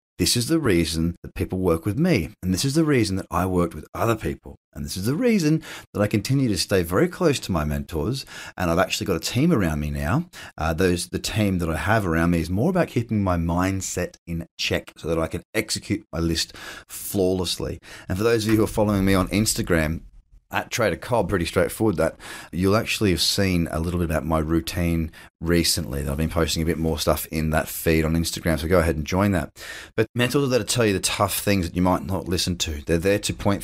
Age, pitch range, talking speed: 30-49, 80-100 Hz, 240 wpm